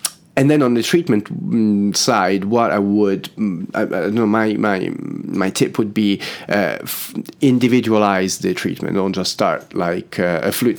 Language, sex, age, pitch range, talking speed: English, male, 30-49, 90-105 Hz, 165 wpm